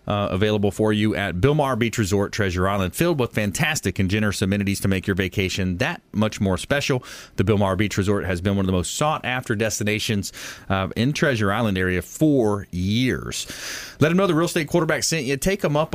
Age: 30-49